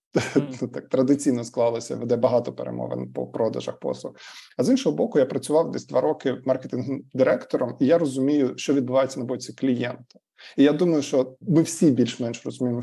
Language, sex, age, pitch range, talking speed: Ukrainian, male, 20-39, 120-140 Hz, 165 wpm